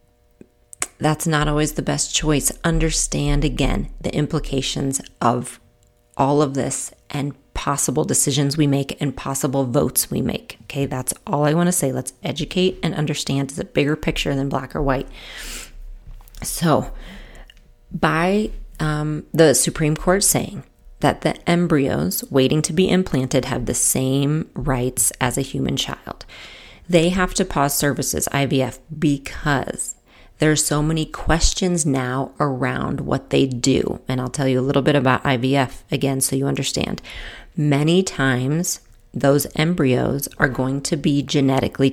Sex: female